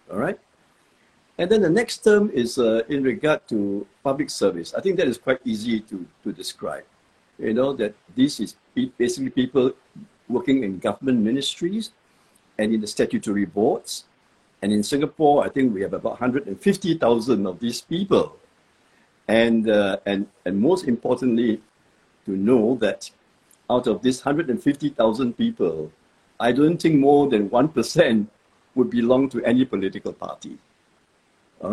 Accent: Malaysian